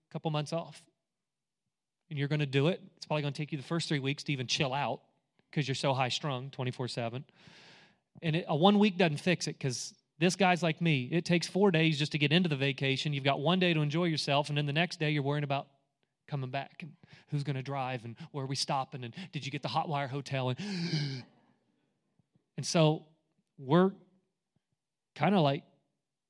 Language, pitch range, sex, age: English, 135-170 Hz, male, 30-49